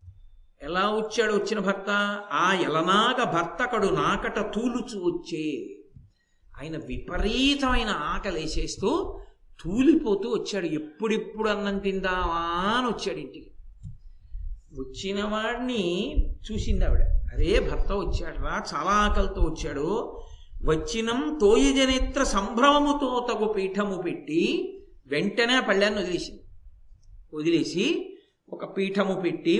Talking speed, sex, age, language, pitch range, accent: 90 wpm, male, 50-69, Telugu, 160-225 Hz, native